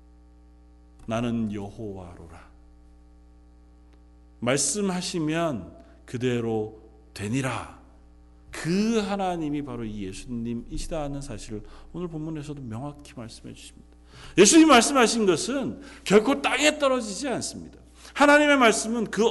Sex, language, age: male, Korean, 40-59